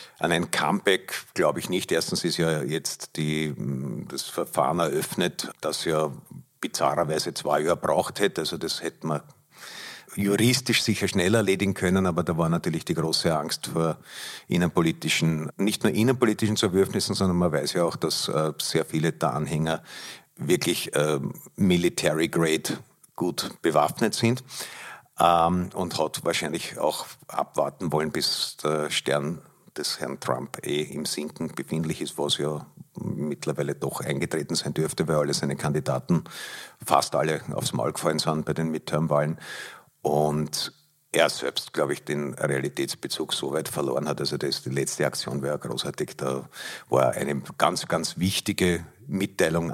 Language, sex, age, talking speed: German, male, 50-69, 150 wpm